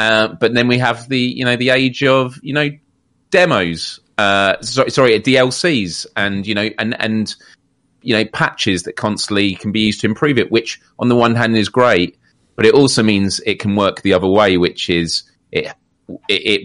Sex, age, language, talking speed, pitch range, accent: male, 30-49, English, 200 wpm, 90-115 Hz, British